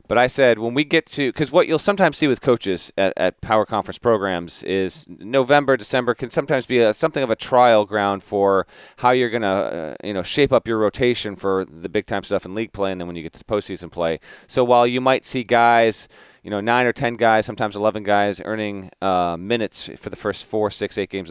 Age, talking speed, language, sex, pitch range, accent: 30-49, 235 wpm, English, male, 95-120 Hz, American